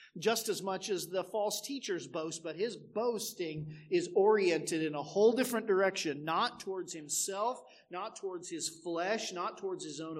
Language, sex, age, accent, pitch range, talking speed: English, male, 40-59, American, 155-210 Hz, 170 wpm